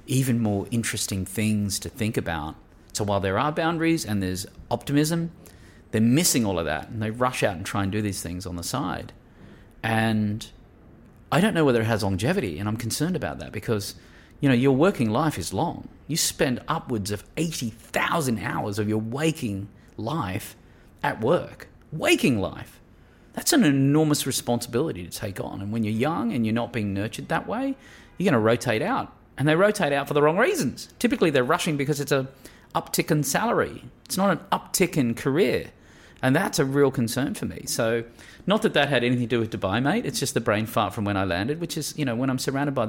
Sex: male